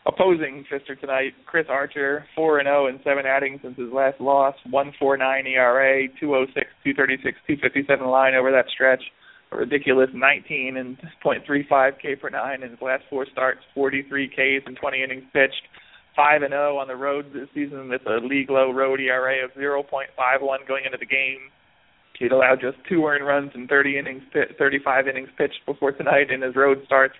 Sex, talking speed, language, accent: male, 210 wpm, English, American